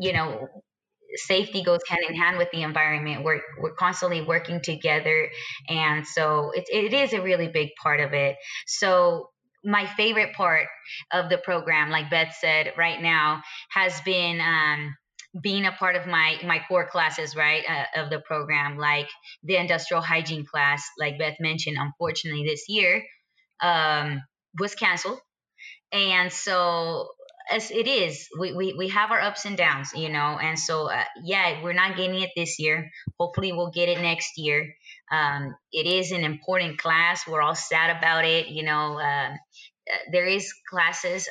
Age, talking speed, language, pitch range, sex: 20-39, 170 wpm, English, 155-180 Hz, female